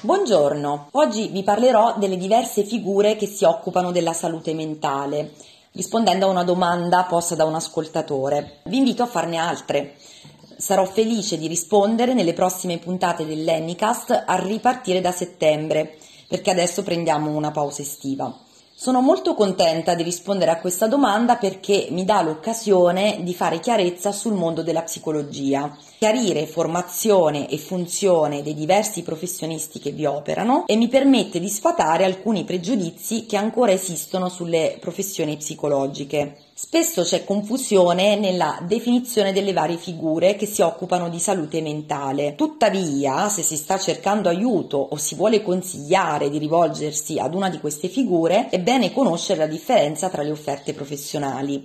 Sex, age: female, 30-49